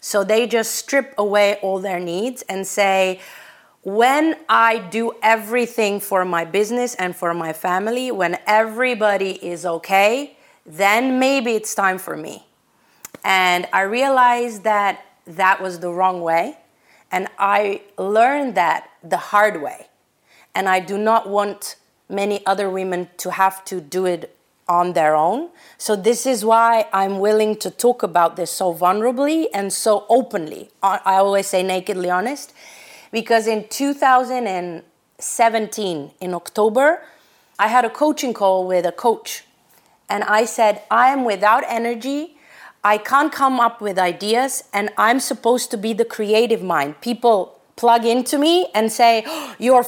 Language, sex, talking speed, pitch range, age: English, female, 150 wpm, 190-250 Hz, 30-49